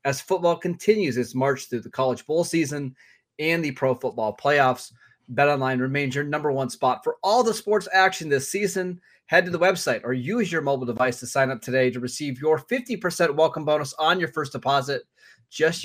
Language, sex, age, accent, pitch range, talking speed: English, male, 20-39, American, 125-160 Hz, 195 wpm